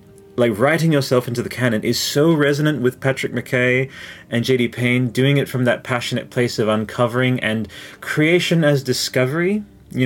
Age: 30-49